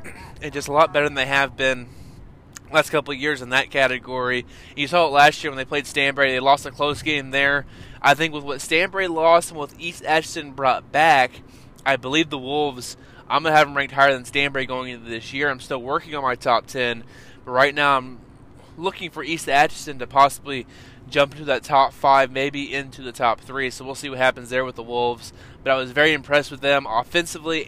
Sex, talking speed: male, 230 wpm